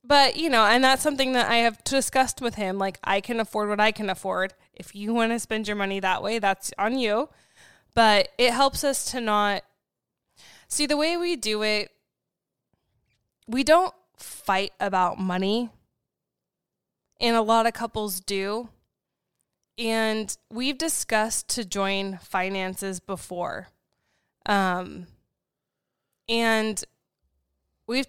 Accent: American